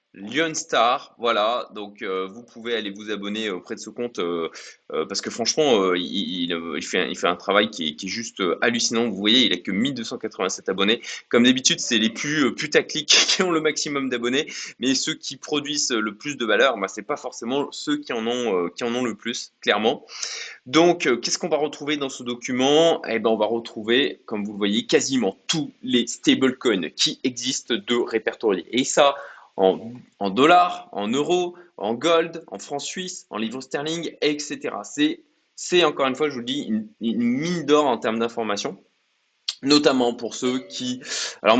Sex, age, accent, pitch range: male, 20-39, French, 115-150 Hz